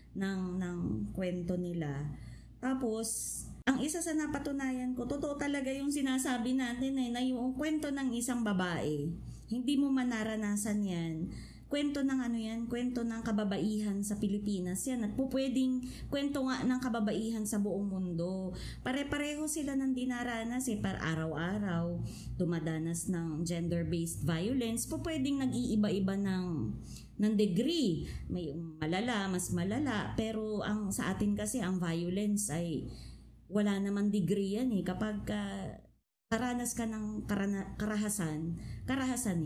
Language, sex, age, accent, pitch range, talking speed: Filipino, female, 20-39, native, 180-240 Hz, 130 wpm